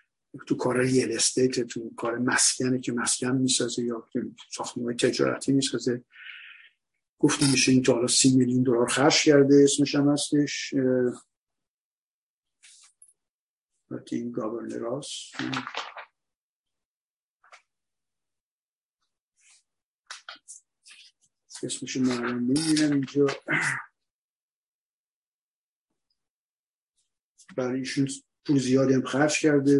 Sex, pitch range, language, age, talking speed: male, 120-135 Hz, Persian, 50-69, 60 wpm